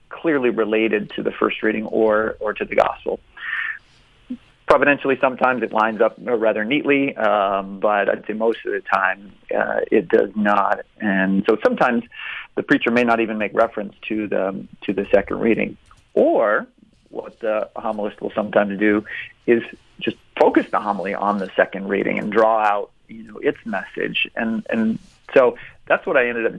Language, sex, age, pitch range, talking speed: English, male, 40-59, 105-120 Hz, 175 wpm